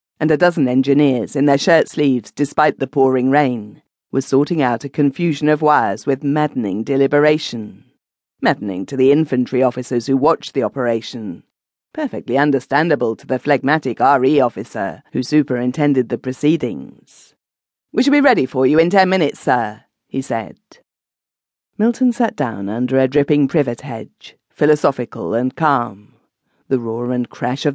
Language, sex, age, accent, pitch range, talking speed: English, female, 40-59, British, 125-160 Hz, 150 wpm